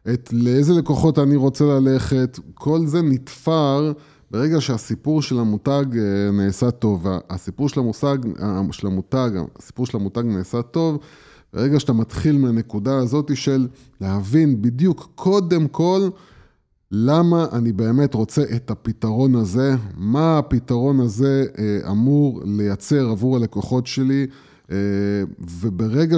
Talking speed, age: 115 wpm, 20-39